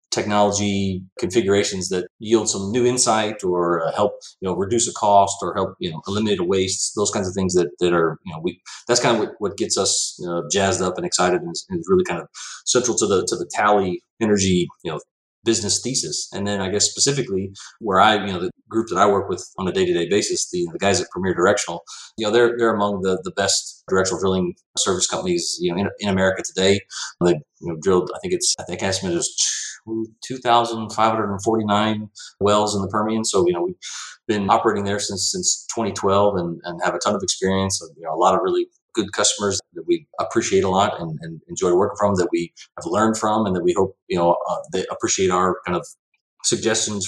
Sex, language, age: male, English, 30-49